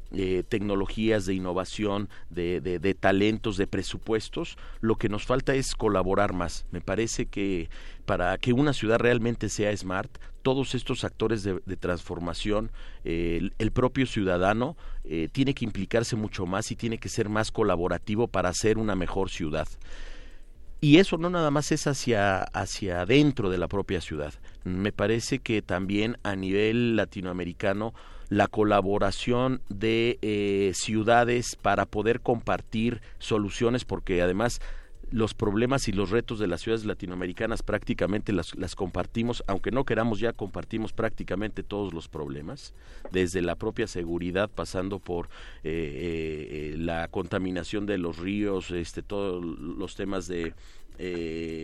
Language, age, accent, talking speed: Spanish, 40-59, Mexican, 150 wpm